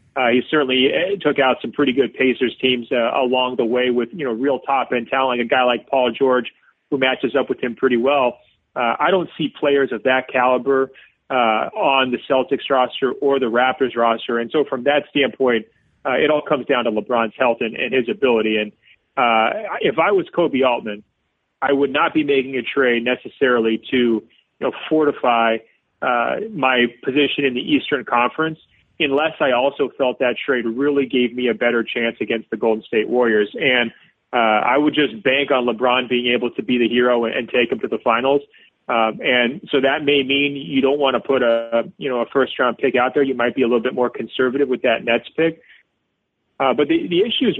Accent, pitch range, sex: American, 120-140 Hz, male